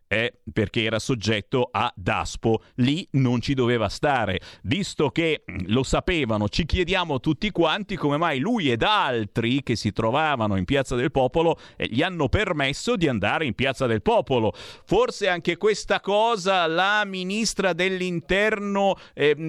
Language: Italian